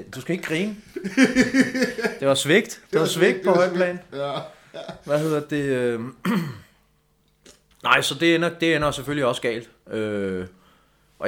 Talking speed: 130 wpm